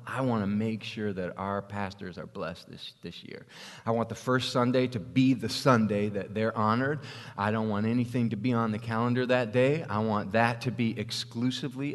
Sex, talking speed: male, 205 wpm